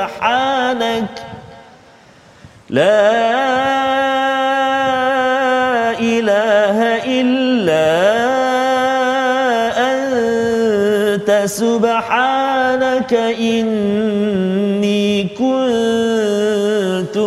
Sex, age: male, 40-59